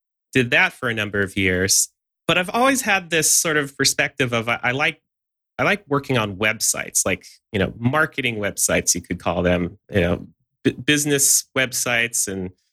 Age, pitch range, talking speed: 30-49, 95-130 Hz, 185 wpm